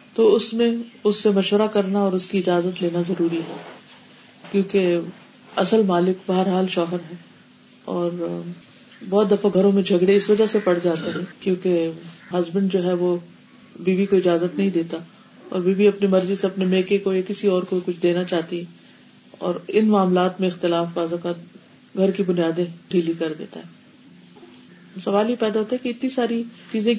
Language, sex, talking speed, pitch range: Urdu, female, 180 wpm, 175-220 Hz